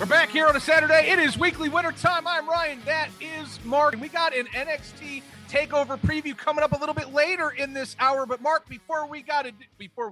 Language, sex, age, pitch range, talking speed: English, male, 30-49, 185-300 Hz, 230 wpm